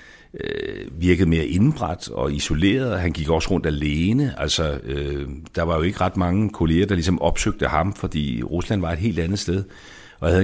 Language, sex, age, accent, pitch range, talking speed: Danish, male, 60-79, native, 80-100 Hz, 190 wpm